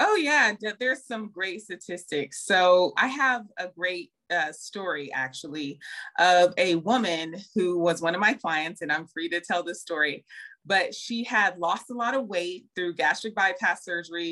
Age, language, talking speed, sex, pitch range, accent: 20-39, English, 175 wpm, female, 175-220 Hz, American